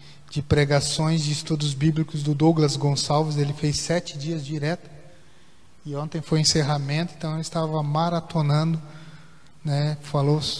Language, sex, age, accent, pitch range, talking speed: Portuguese, male, 20-39, Brazilian, 150-180 Hz, 125 wpm